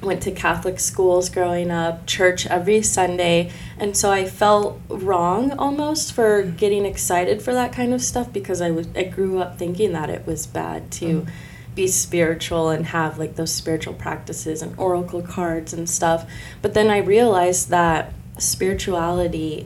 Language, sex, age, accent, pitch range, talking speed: English, female, 20-39, American, 165-195 Hz, 165 wpm